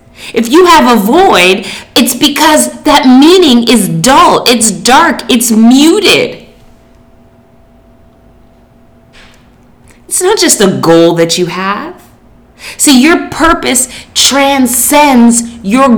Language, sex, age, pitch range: English, female, 30-49, 200-285 Hz